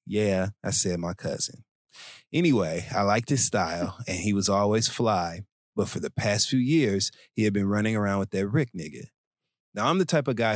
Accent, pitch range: American, 95-115 Hz